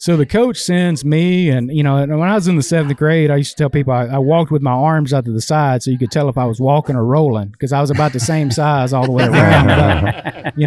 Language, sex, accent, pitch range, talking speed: English, male, American, 130-160 Hz, 305 wpm